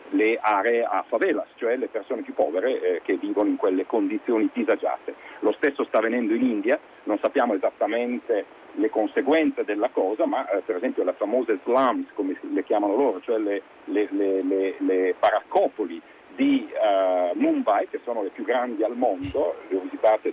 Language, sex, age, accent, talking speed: Italian, male, 50-69, native, 165 wpm